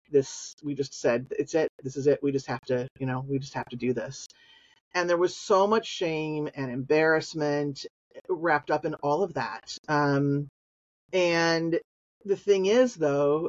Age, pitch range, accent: 40-59, 140-170 Hz, American